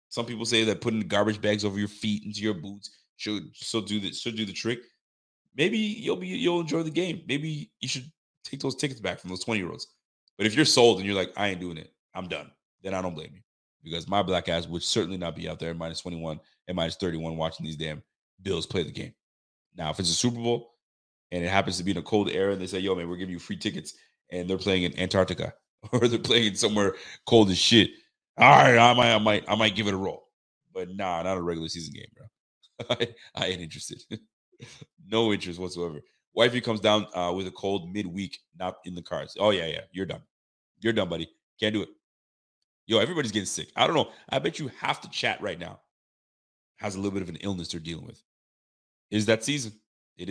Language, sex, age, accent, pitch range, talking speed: English, male, 30-49, American, 90-115 Hz, 235 wpm